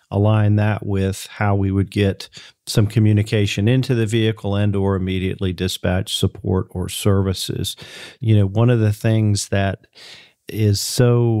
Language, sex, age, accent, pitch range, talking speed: English, male, 40-59, American, 100-115 Hz, 145 wpm